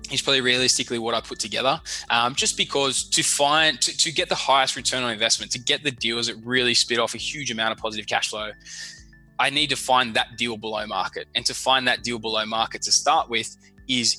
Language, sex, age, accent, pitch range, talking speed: English, male, 20-39, Australian, 110-125 Hz, 230 wpm